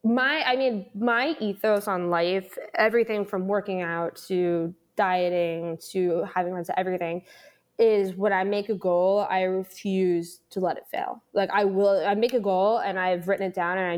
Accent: American